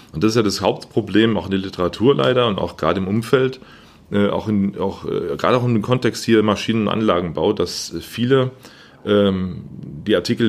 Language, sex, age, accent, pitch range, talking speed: German, male, 30-49, German, 90-110 Hz, 175 wpm